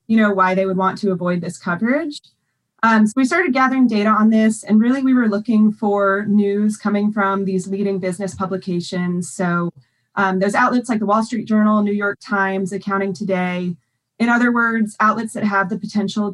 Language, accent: English, American